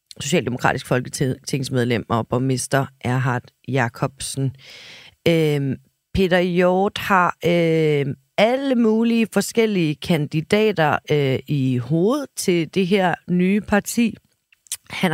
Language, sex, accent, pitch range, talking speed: Danish, female, native, 150-205 Hz, 85 wpm